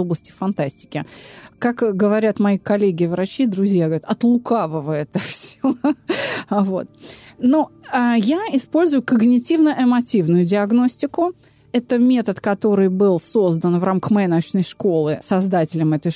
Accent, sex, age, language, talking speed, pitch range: native, female, 30-49, Russian, 105 wpm, 180-250 Hz